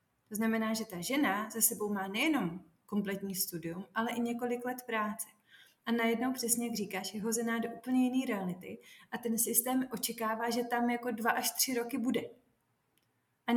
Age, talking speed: 30-49, 175 wpm